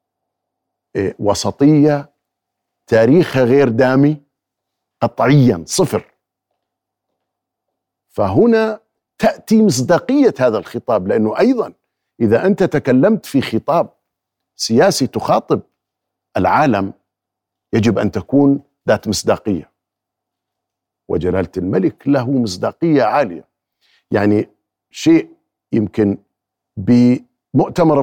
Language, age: Arabic, 50-69